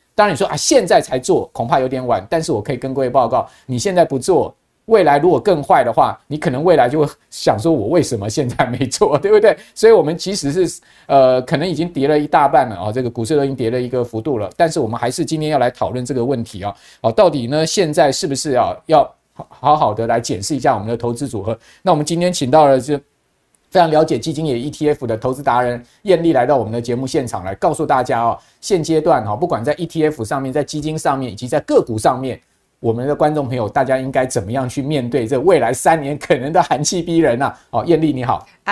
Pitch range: 120-160 Hz